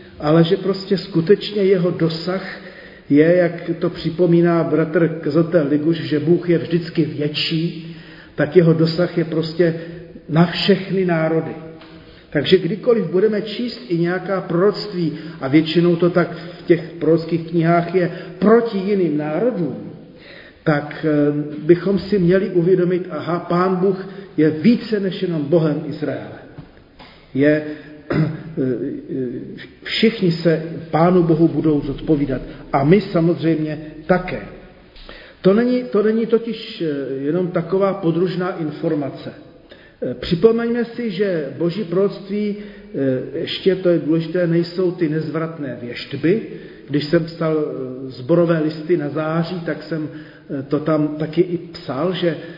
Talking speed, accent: 120 wpm, native